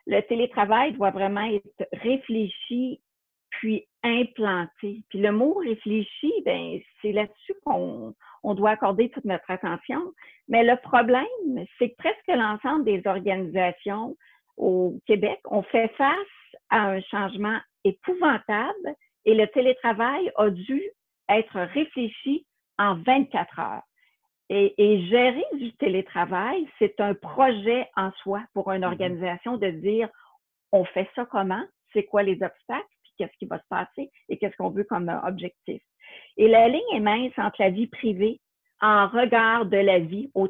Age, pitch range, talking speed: 50-69, 195-255 Hz, 150 wpm